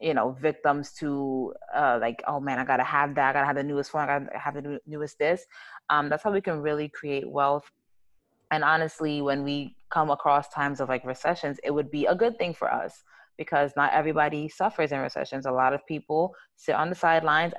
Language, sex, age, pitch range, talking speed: English, female, 20-39, 140-165 Hz, 230 wpm